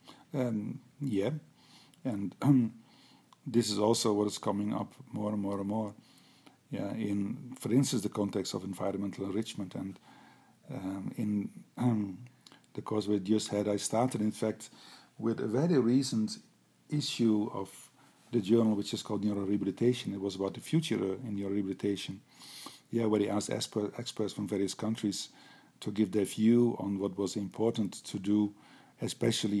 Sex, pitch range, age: male, 100-115 Hz, 50-69